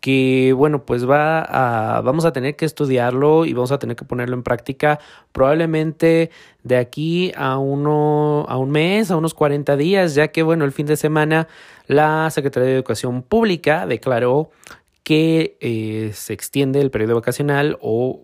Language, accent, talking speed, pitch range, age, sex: Spanish, Mexican, 170 wpm, 120-150 Hz, 20-39, male